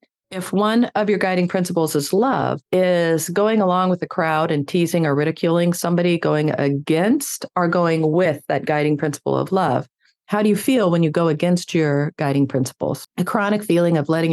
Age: 40-59